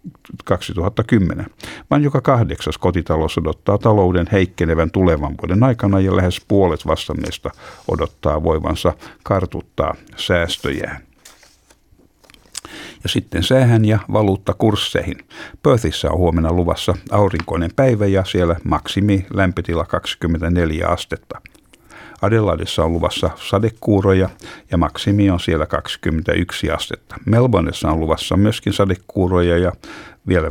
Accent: native